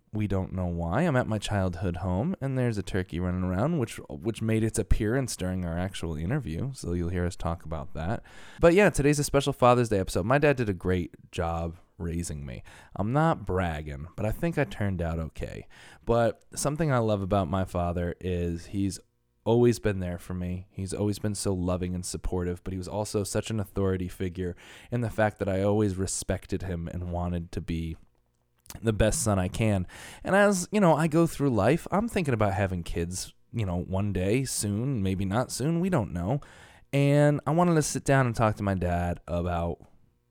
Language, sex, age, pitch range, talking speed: English, male, 20-39, 90-130 Hz, 205 wpm